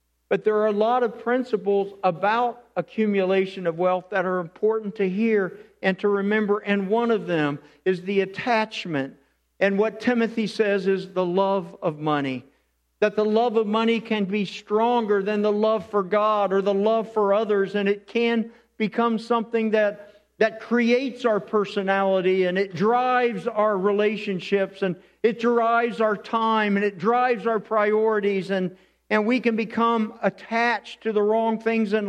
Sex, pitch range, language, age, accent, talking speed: male, 180-225 Hz, English, 50-69, American, 165 wpm